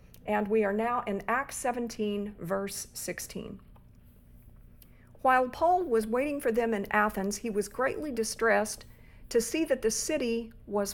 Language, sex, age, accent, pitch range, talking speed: English, female, 50-69, American, 205-235 Hz, 150 wpm